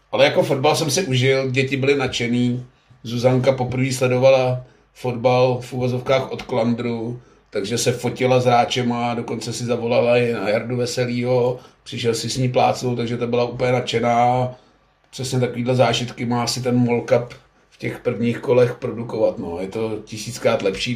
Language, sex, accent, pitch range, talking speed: Czech, male, native, 120-130 Hz, 160 wpm